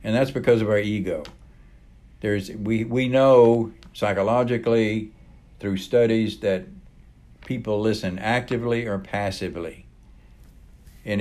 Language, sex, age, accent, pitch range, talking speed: English, male, 60-79, American, 95-125 Hz, 105 wpm